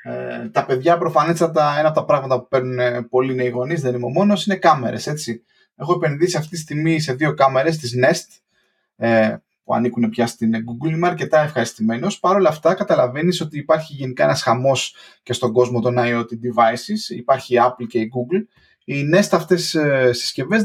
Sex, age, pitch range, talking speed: male, 20-39, 120-165 Hz, 185 wpm